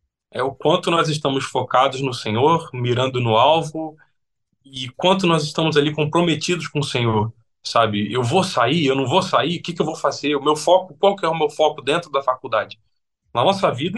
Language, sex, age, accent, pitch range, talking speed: Portuguese, male, 20-39, Brazilian, 115-160 Hz, 210 wpm